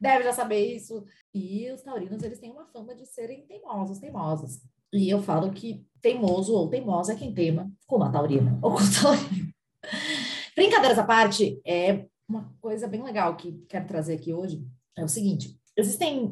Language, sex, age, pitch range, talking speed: Portuguese, female, 20-39, 185-235 Hz, 180 wpm